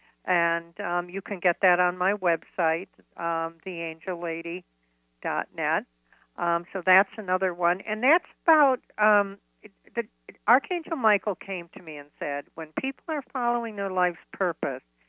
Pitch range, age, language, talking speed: 170-230 Hz, 60-79, English, 140 wpm